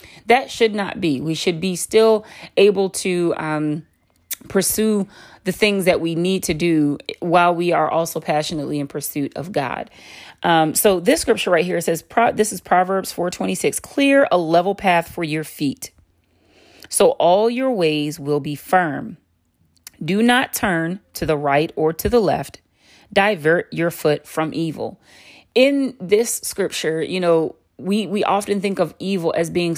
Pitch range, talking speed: 155-200 Hz, 165 wpm